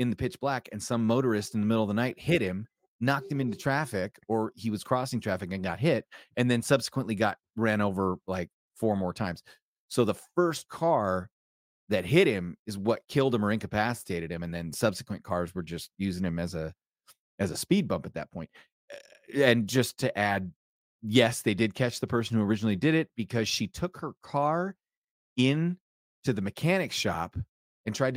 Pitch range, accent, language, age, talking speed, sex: 95-120 Hz, American, English, 30-49, 200 wpm, male